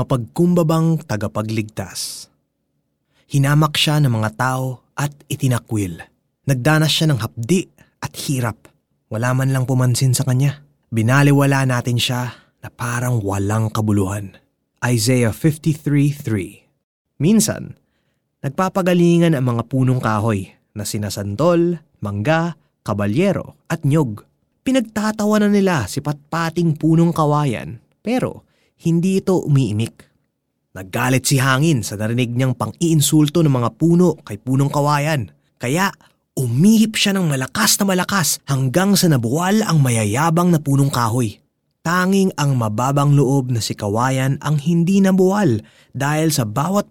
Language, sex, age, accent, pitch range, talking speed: Filipino, male, 20-39, native, 115-165 Hz, 120 wpm